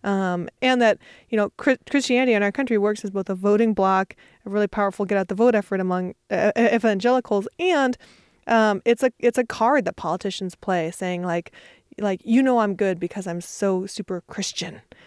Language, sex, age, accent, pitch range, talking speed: English, female, 20-39, American, 190-235 Hz, 185 wpm